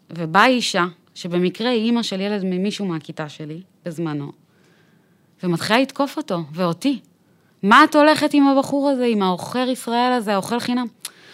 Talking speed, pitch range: 145 wpm, 180-220 Hz